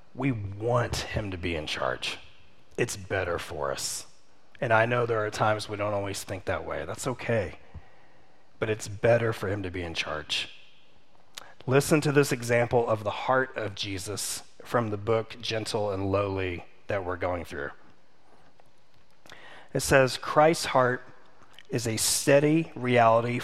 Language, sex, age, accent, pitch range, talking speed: English, male, 30-49, American, 110-140 Hz, 155 wpm